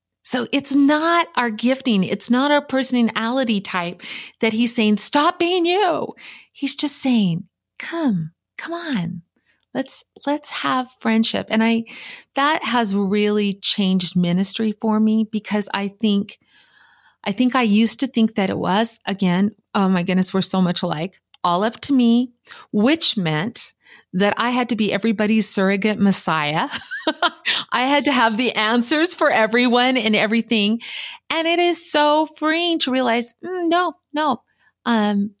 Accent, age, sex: American, 40-59, female